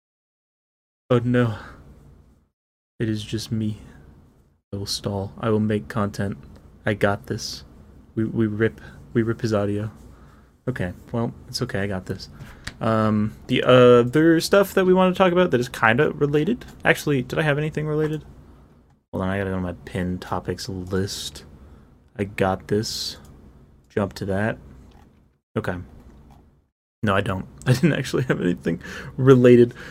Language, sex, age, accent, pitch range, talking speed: English, male, 20-39, American, 90-130 Hz, 150 wpm